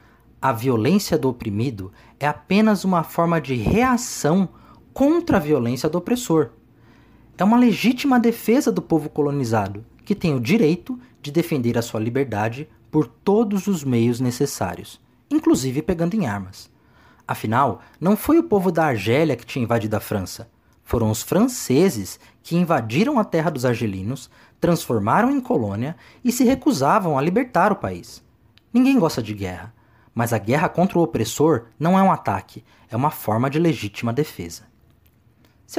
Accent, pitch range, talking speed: Brazilian, 115-190 Hz, 155 wpm